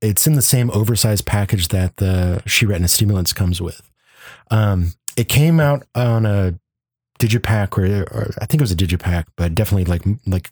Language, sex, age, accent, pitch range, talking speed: English, male, 30-49, American, 90-105 Hz, 190 wpm